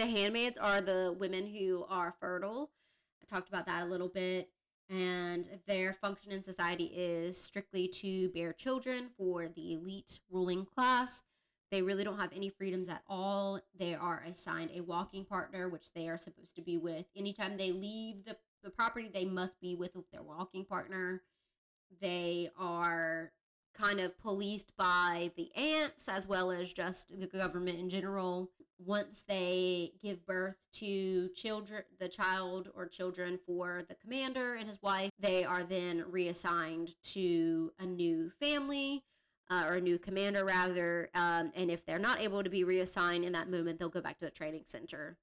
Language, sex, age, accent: English, female, 20-39, American